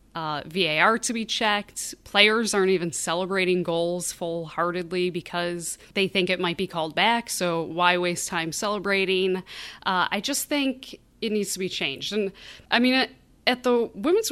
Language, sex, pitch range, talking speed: English, female, 175-220 Hz, 165 wpm